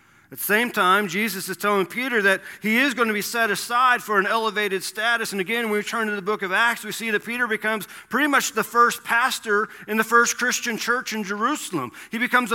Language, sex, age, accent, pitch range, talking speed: English, male, 40-59, American, 210-245 Hz, 235 wpm